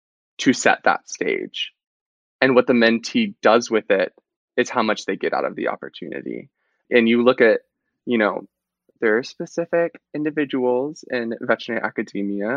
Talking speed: 160 wpm